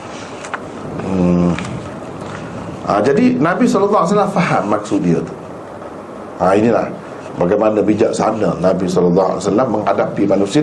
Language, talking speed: Malay, 130 wpm